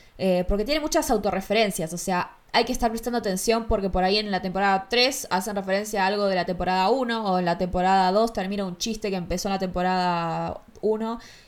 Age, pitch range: 20-39, 180-215 Hz